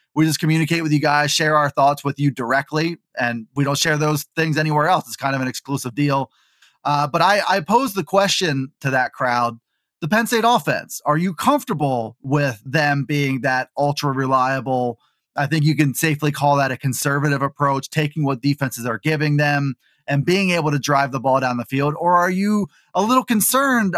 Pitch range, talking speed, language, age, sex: 140-170 Hz, 200 wpm, English, 20-39, male